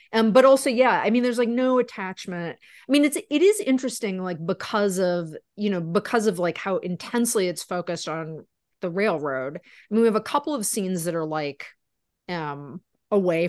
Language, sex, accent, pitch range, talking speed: English, female, American, 175-255 Hz, 195 wpm